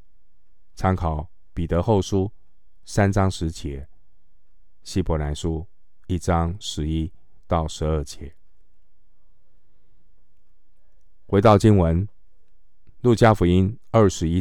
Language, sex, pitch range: Chinese, male, 75-95 Hz